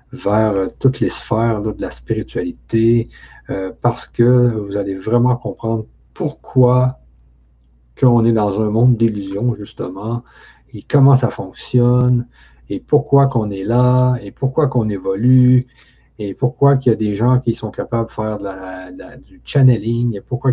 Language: French